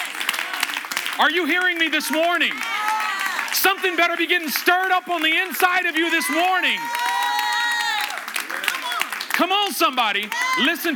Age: 40-59